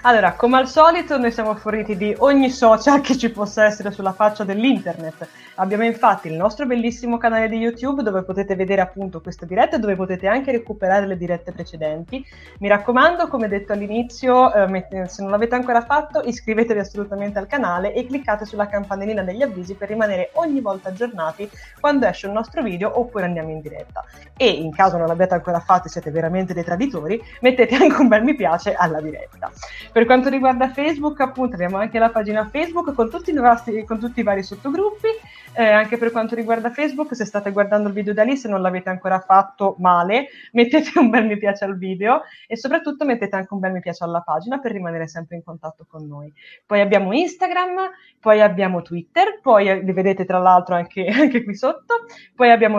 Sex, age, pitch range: female, 20-39, 190-255 Hz